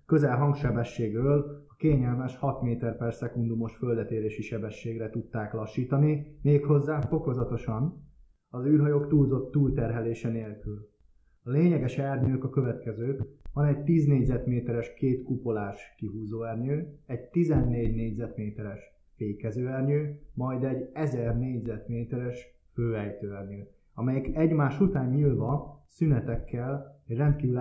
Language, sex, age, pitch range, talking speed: Hungarian, male, 20-39, 110-140 Hz, 110 wpm